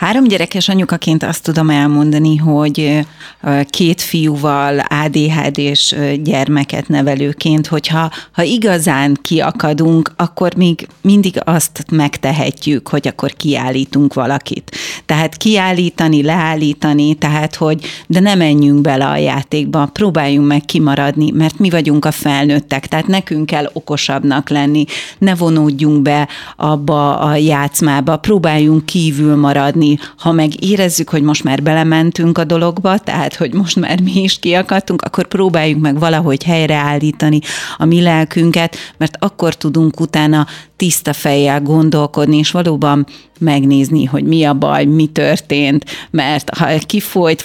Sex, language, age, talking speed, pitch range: female, Hungarian, 30-49, 130 wpm, 145-170 Hz